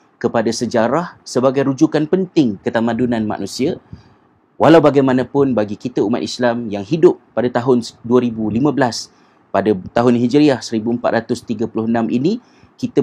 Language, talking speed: Malay, 110 wpm